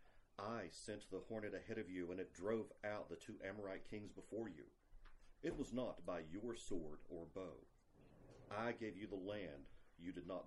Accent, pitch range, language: American, 90-115 Hz, English